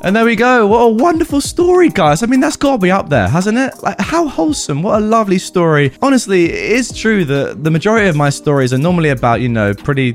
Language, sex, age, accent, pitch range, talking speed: English, male, 20-39, British, 125-180 Hz, 240 wpm